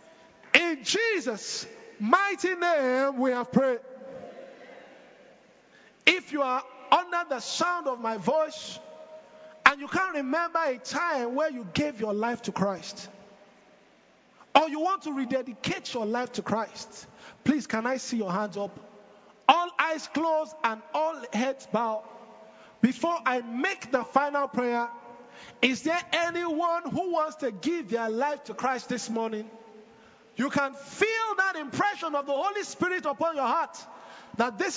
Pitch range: 230-315 Hz